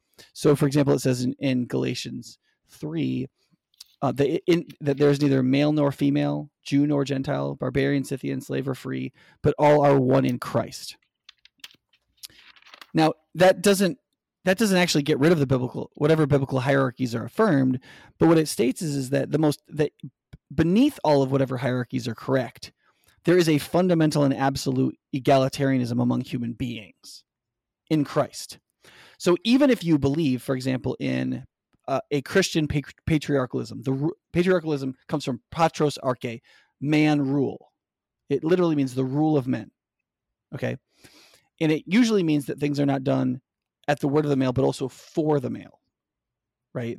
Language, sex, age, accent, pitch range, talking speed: English, male, 30-49, American, 130-155 Hz, 165 wpm